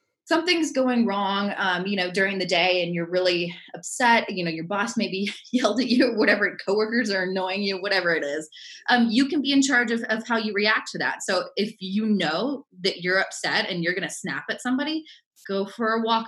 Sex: female